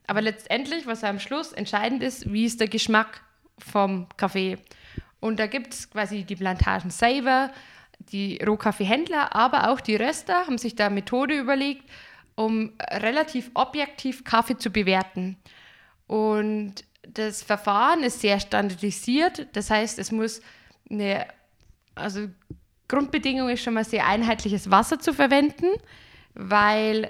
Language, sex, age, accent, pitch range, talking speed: German, female, 20-39, German, 200-245 Hz, 135 wpm